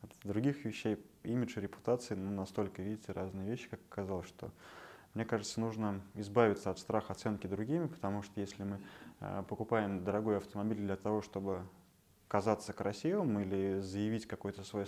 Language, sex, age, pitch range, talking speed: Russian, male, 20-39, 95-110 Hz, 155 wpm